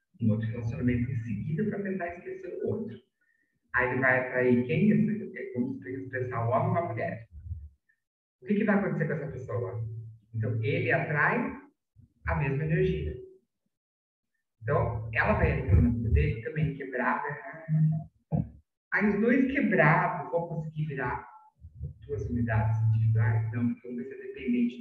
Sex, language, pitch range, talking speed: male, Portuguese, 115-185 Hz, 135 wpm